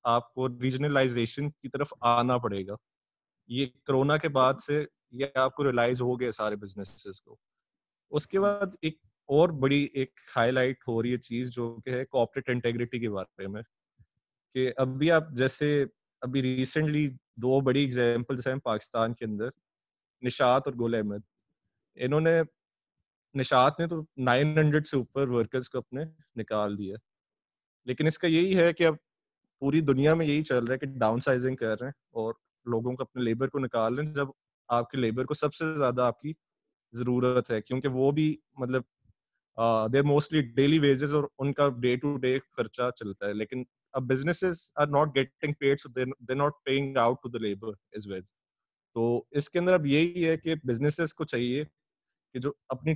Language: Urdu